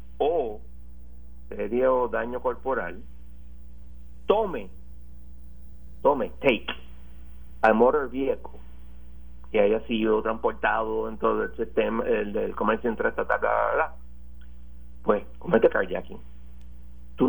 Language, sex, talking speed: Spanish, male, 100 wpm